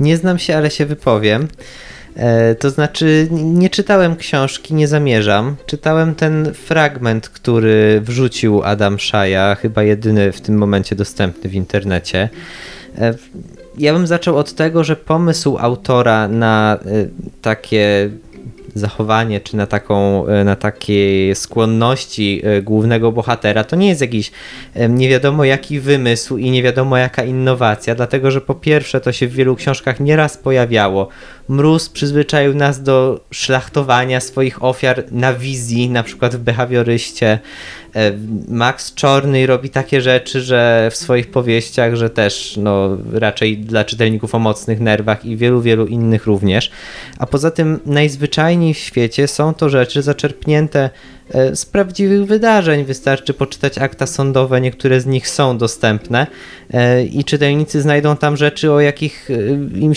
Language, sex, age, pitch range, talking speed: Polish, male, 20-39, 110-145 Hz, 135 wpm